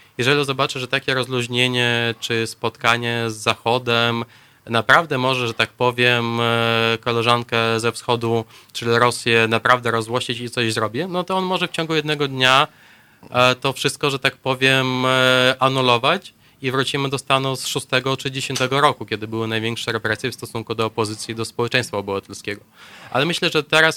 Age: 20-39